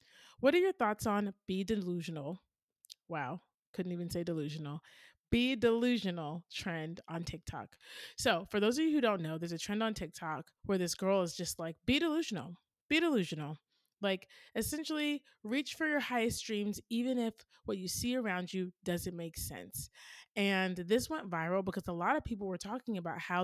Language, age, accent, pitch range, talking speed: English, 30-49, American, 165-210 Hz, 180 wpm